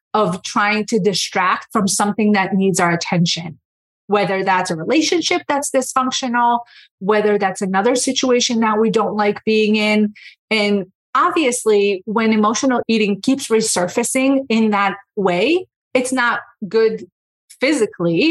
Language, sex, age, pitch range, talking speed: English, female, 30-49, 195-260 Hz, 130 wpm